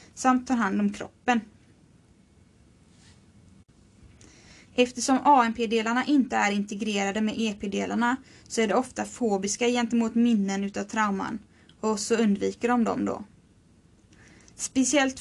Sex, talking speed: female, 110 wpm